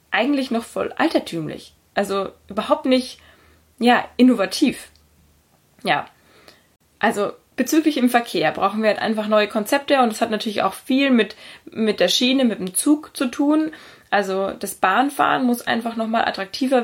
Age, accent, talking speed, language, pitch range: 20-39, German, 150 wpm, German, 195-245 Hz